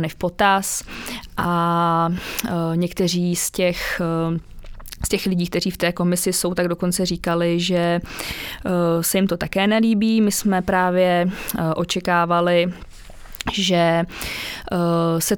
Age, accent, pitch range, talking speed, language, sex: 20-39, Czech, 170-185 Hz, 125 wpm, English, female